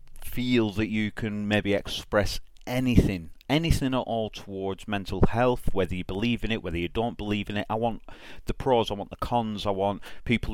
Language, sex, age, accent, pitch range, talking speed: English, male, 30-49, British, 90-110 Hz, 200 wpm